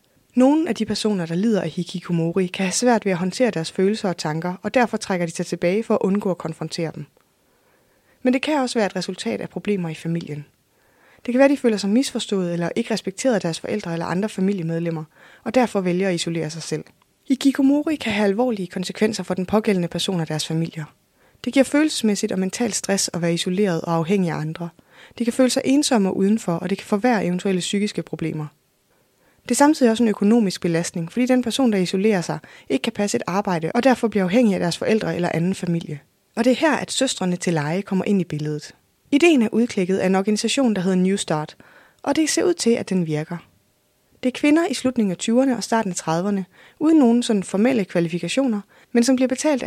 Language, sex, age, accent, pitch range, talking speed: Danish, female, 20-39, native, 175-235 Hz, 220 wpm